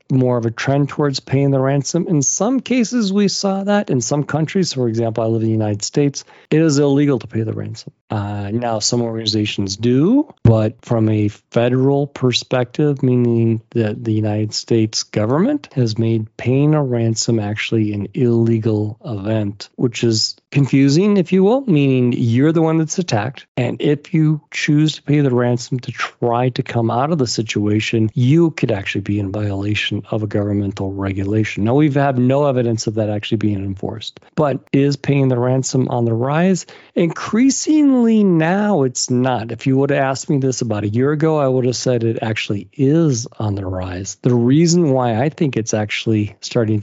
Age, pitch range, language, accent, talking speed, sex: 40-59, 110-145 Hz, English, American, 185 wpm, male